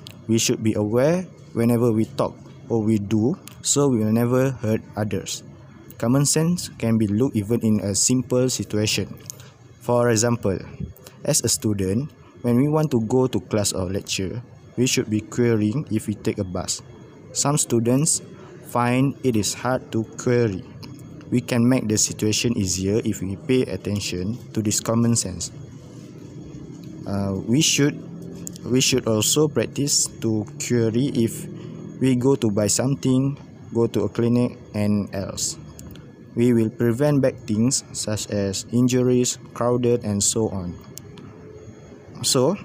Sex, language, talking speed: male, English, 150 wpm